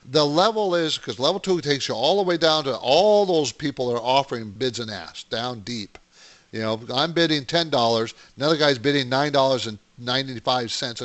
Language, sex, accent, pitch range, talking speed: English, male, American, 120-150 Hz, 180 wpm